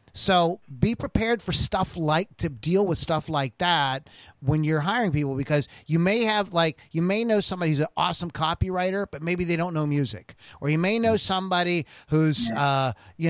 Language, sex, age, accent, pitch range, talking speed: English, male, 30-49, American, 145-180 Hz, 205 wpm